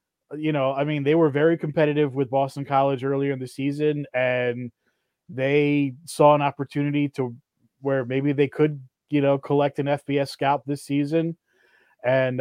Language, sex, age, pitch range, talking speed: English, male, 20-39, 135-160 Hz, 165 wpm